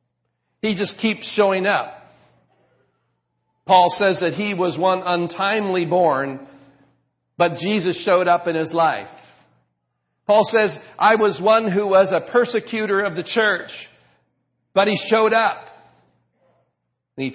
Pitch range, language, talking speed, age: 120-190 Hz, English, 130 wpm, 50-69